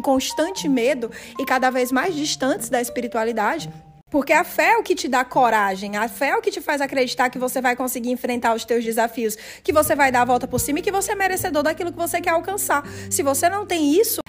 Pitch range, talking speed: 250-335 Hz, 240 wpm